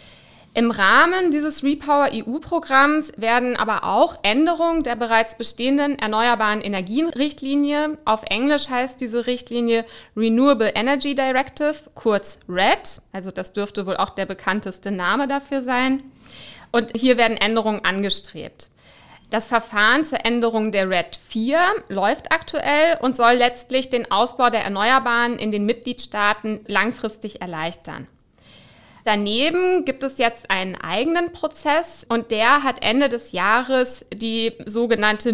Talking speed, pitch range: 125 wpm, 210-275 Hz